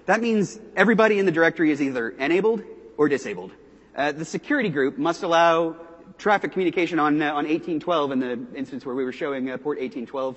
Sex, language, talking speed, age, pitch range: male, English, 190 wpm, 30-49, 130-200 Hz